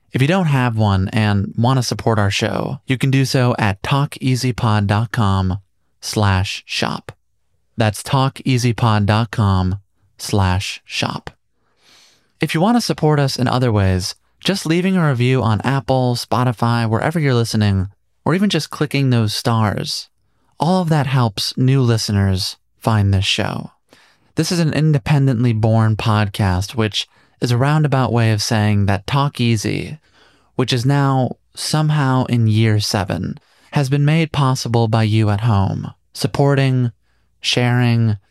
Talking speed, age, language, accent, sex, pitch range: 140 wpm, 30-49, English, American, male, 105-140 Hz